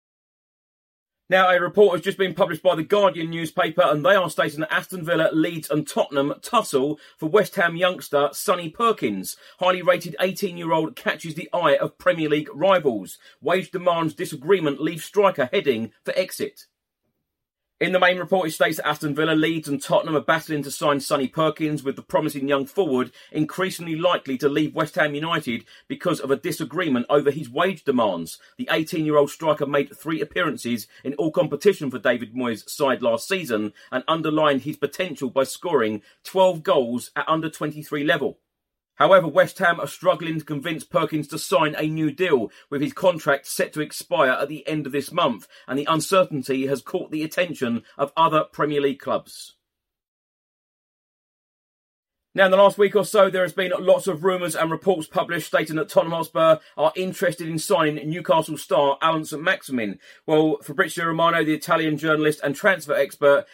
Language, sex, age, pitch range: English, male, 30-49, 145-185 Hz